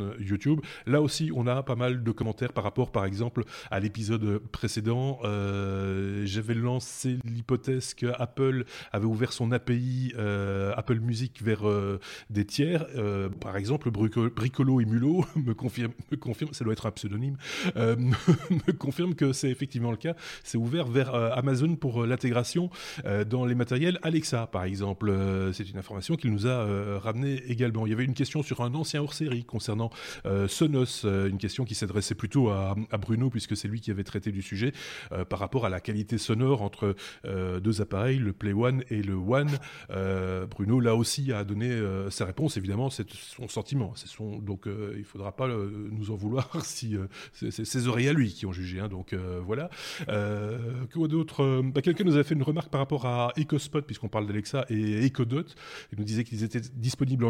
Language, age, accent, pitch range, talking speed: French, 30-49, French, 105-130 Hz, 205 wpm